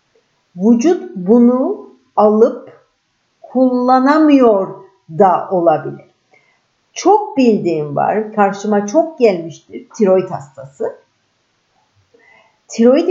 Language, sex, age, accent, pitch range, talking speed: Turkish, female, 50-69, native, 195-330 Hz, 70 wpm